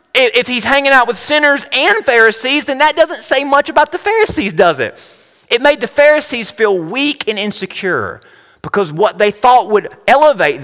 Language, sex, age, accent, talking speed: English, male, 30-49, American, 180 wpm